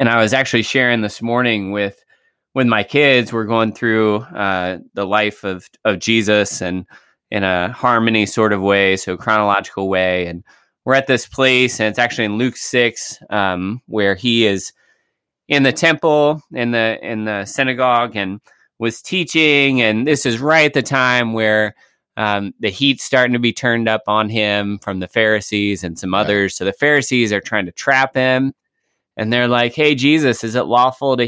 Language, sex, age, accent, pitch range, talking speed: English, male, 20-39, American, 105-130 Hz, 185 wpm